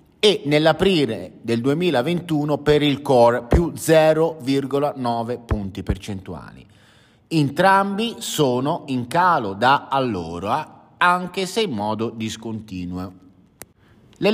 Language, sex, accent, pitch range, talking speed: Italian, male, native, 105-165 Hz, 90 wpm